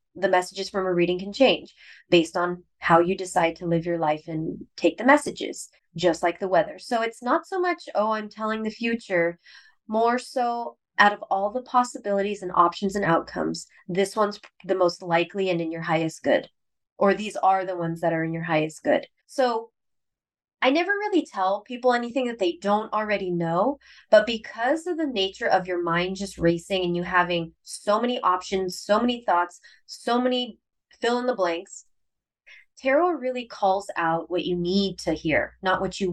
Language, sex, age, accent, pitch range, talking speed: English, female, 20-39, American, 175-235 Hz, 185 wpm